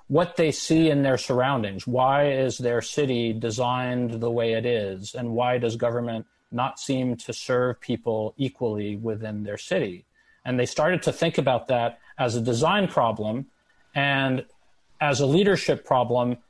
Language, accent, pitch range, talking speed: English, American, 120-150 Hz, 160 wpm